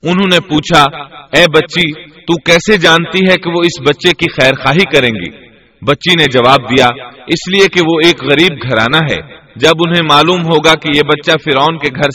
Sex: male